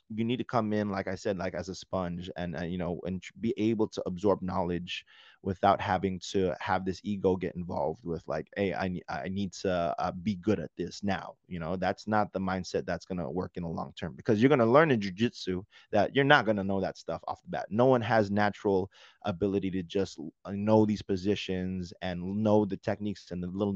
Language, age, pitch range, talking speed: English, 20-39, 90-105 Hz, 235 wpm